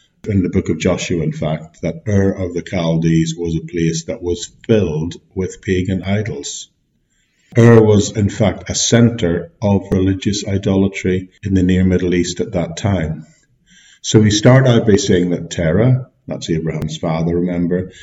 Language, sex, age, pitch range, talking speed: English, male, 50-69, 90-115 Hz, 165 wpm